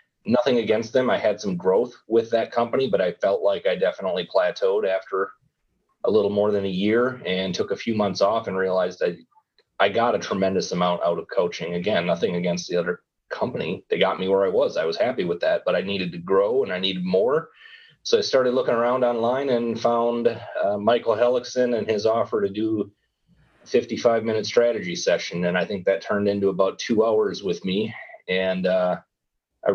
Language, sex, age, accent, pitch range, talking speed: English, male, 30-49, American, 95-125 Hz, 205 wpm